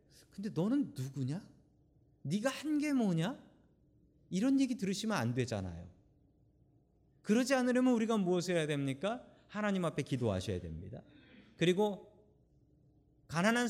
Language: Korean